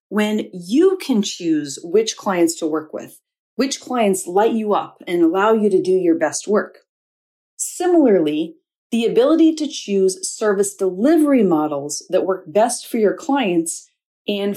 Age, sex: 40-59, female